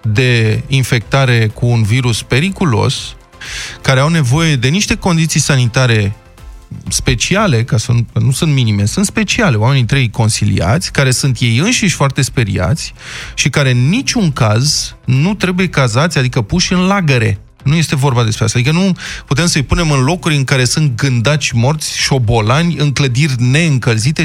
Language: Romanian